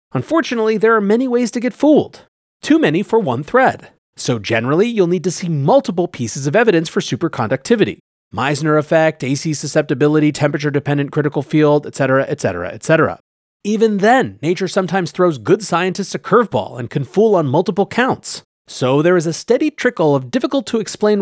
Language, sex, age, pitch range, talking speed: English, male, 30-49, 140-205 Hz, 165 wpm